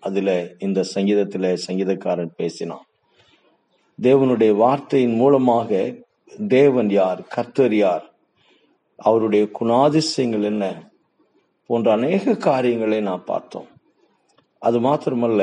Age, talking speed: 50-69, 85 wpm